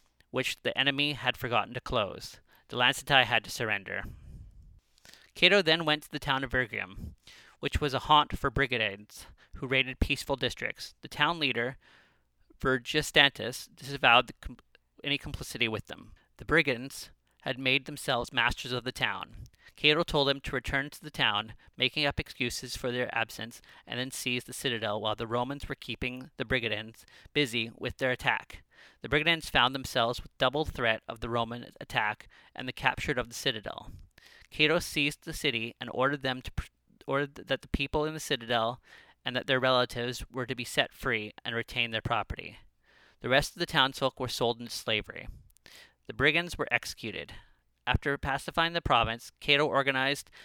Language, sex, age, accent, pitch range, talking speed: English, male, 30-49, American, 115-140 Hz, 170 wpm